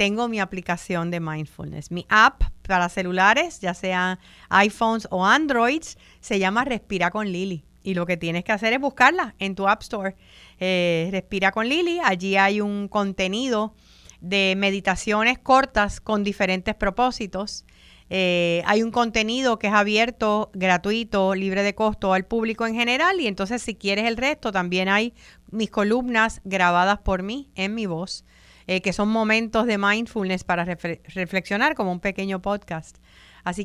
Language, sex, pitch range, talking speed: Spanish, female, 185-220 Hz, 160 wpm